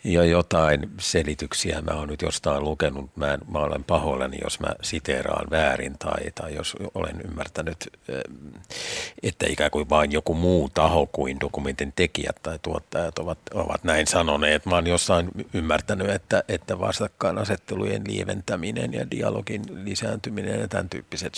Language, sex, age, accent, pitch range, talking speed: Finnish, male, 50-69, native, 75-95 Hz, 145 wpm